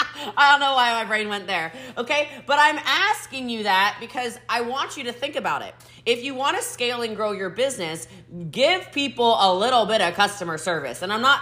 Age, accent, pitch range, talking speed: 20-39, American, 185-280 Hz, 220 wpm